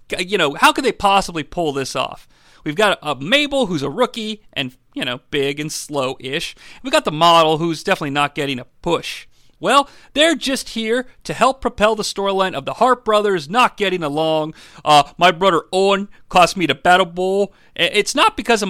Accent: American